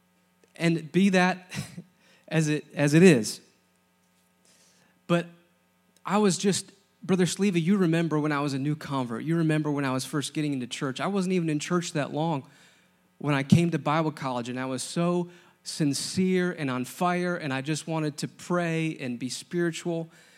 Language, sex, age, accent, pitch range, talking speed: English, male, 30-49, American, 125-170 Hz, 180 wpm